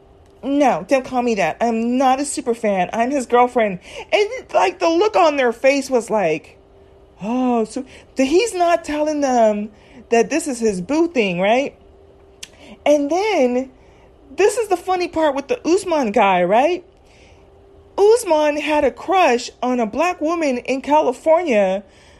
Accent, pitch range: American, 225-310 Hz